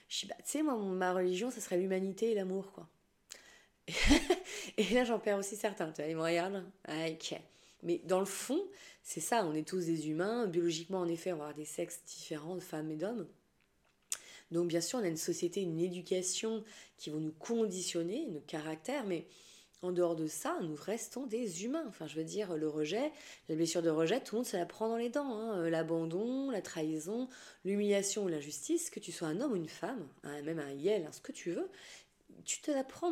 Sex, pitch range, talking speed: female, 170-225 Hz, 220 wpm